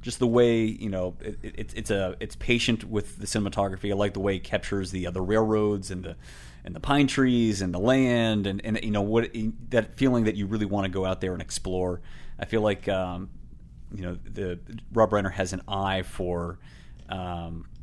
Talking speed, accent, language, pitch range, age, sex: 210 wpm, American, English, 95-115 Hz, 30-49, male